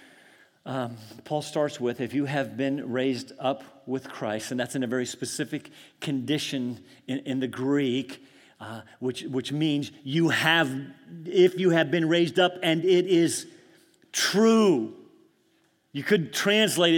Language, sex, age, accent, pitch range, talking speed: English, male, 50-69, American, 165-270 Hz, 150 wpm